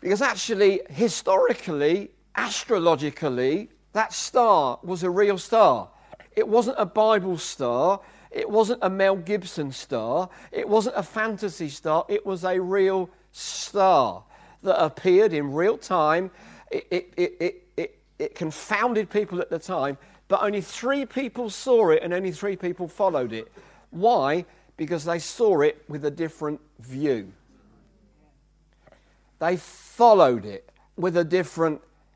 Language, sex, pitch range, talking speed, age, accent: English, male, 170-220 Hz, 140 wpm, 50-69, British